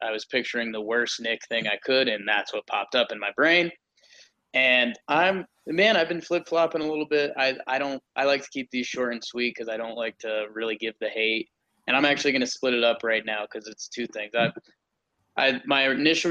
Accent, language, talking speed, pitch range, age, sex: American, English, 230 wpm, 120-145 Hz, 20-39, male